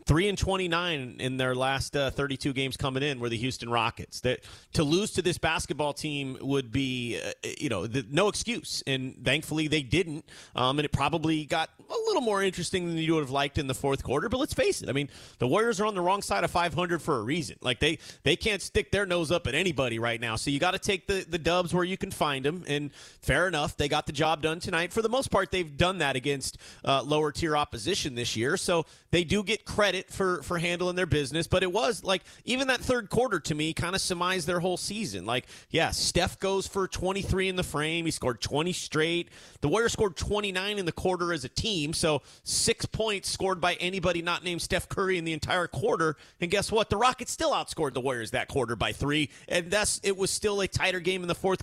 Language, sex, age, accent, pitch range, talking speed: English, male, 30-49, American, 145-190 Hz, 240 wpm